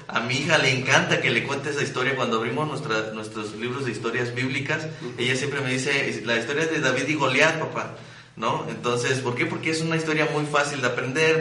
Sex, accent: male, Mexican